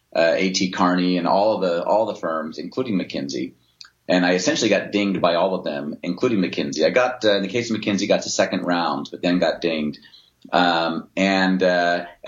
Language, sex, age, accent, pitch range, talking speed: English, male, 30-49, American, 85-95 Hz, 210 wpm